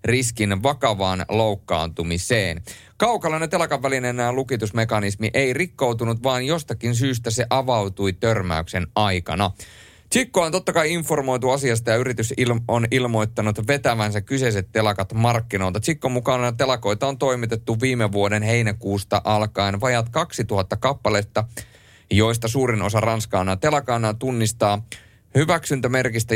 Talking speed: 110 wpm